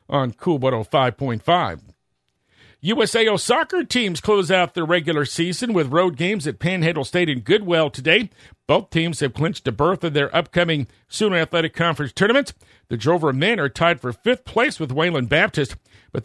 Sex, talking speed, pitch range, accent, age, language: male, 165 wpm, 135-190 Hz, American, 50-69, English